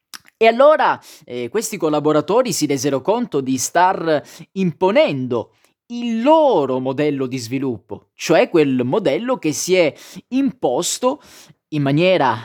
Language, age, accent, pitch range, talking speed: Italian, 30-49, native, 135-195 Hz, 120 wpm